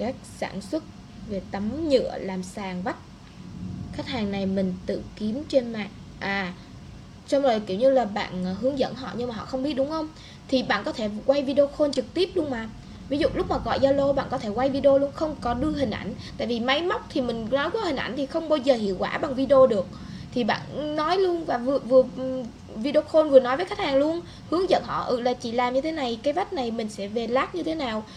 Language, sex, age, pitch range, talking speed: Vietnamese, female, 10-29, 220-285 Hz, 245 wpm